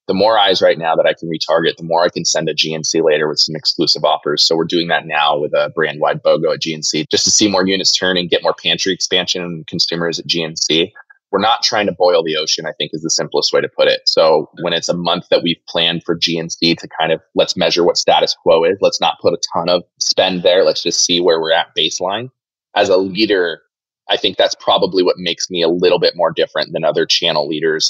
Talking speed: 250 wpm